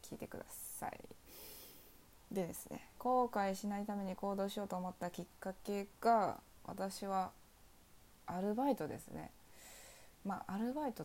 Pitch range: 175-230 Hz